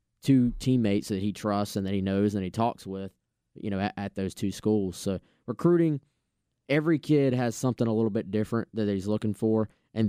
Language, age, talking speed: English, 20-39, 210 wpm